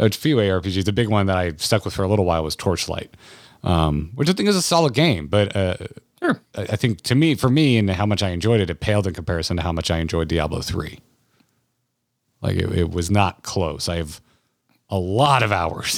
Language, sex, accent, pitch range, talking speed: English, male, American, 90-120 Hz, 230 wpm